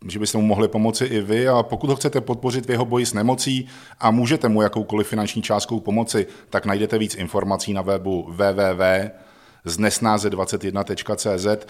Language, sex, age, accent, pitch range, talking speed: Czech, male, 40-59, native, 90-110 Hz, 160 wpm